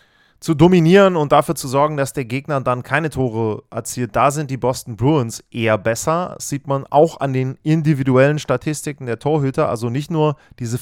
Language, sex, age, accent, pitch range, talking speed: German, male, 30-49, German, 120-150 Hz, 190 wpm